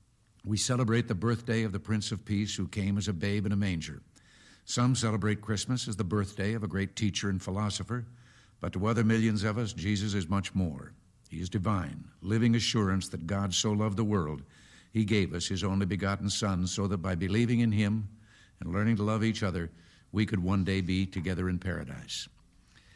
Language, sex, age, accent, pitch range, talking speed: English, male, 60-79, American, 95-115 Hz, 200 wpm